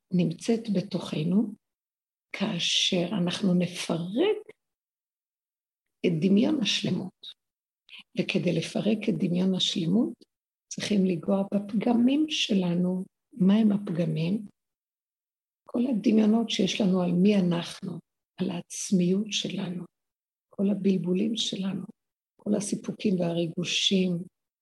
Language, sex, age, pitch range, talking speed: Hebrew, female, 60-79, 180-205 Hz, 90 wpm